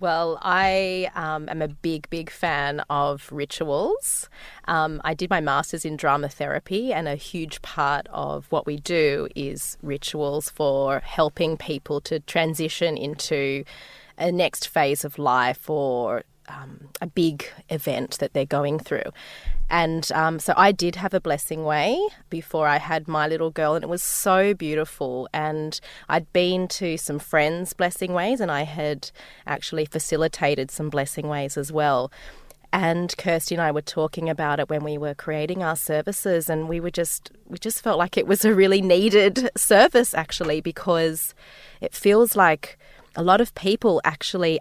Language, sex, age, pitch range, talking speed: English, female, 20-39, 150-175 Hz, 165 wpm